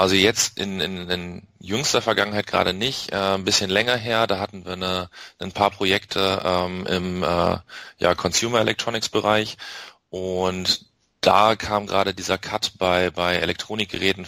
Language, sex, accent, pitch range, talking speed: German, male, German, 90-100 Hz, 145 wpm